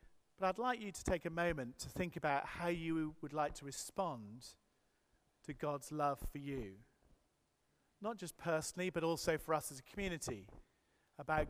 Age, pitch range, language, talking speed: 40-59, 150-200 Hz, English, 170 wpm